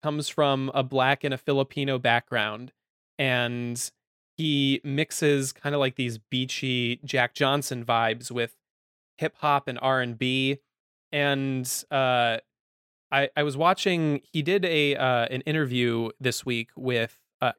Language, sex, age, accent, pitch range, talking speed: English, male, 20-39, American, 115-135 Hz, 145 wpm